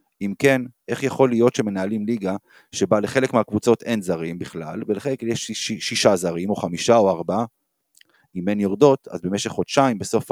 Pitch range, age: 95-130 Hz, 30-49